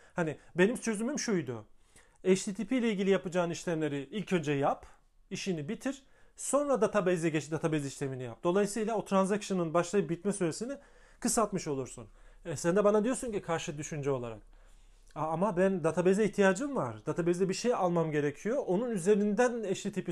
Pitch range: 150-210 Hz